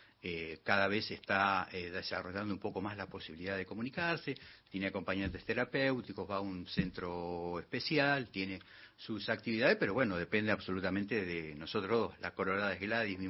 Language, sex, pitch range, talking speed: Spanish, male, 95-145 Hz, 150 wpm